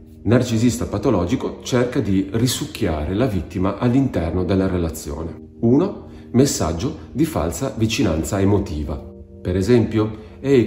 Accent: native